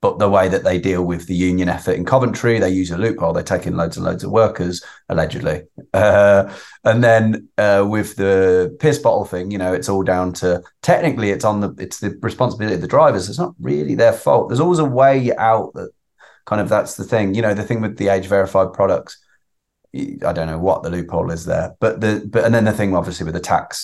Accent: British